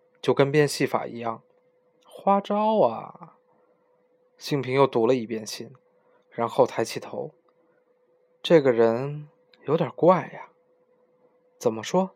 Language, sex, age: Chinese, male, 20-39